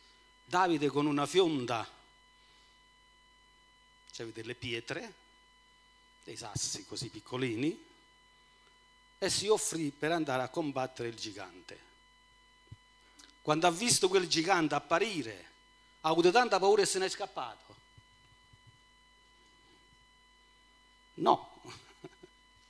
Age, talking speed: 50-69, 95 wpm